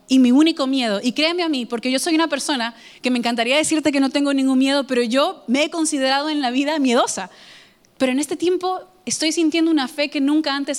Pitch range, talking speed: 235-290 Hz, 235 wpm